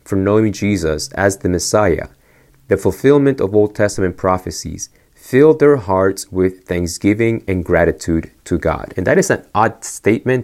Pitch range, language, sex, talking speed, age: 90-110 Hz, English, male, 155 wpm, 30-49